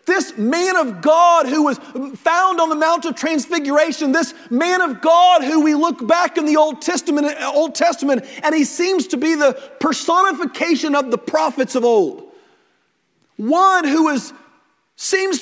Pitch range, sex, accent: 275-345 Hz, male, American